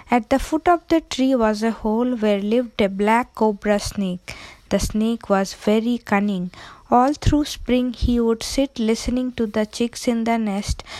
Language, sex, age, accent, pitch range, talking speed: English, female, 20-39, Indian, 215-250 Hz, 180 wpm